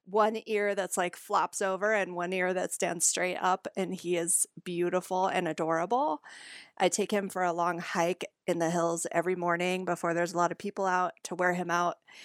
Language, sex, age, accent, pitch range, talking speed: English, female, 30-49, American, 175-205 Hz, 205 wpm